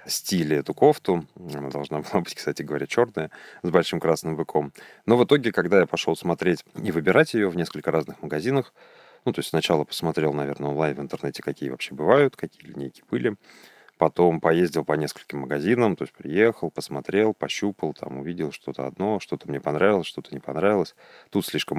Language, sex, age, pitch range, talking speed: Russian, male, 30-49, 75-85 Hz, 180 wpm